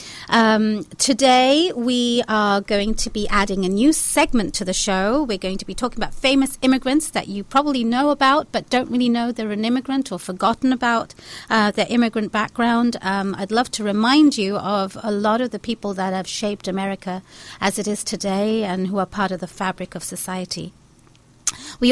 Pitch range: 205-265 Hz